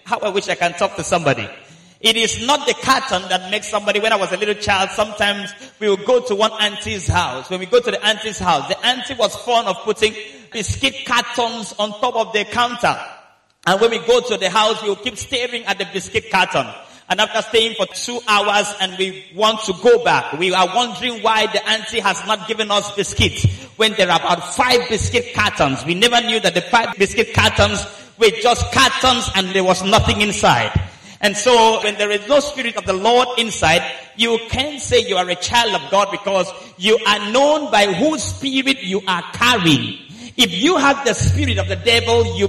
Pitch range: 195-250 Hz